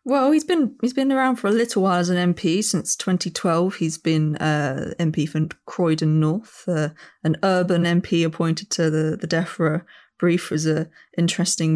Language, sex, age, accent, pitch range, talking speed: English, female, 20-39, British, 155-180 Hz, 185 wpm